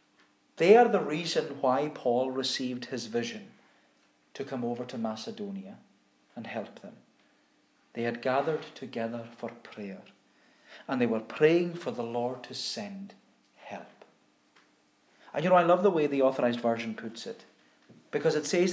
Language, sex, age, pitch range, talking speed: English, male, 40-59, 120-175 Hz, 155 wpm